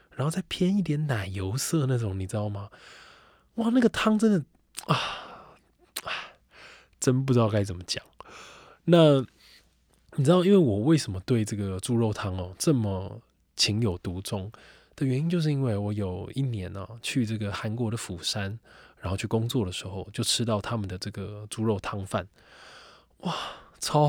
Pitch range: 100-130 Hz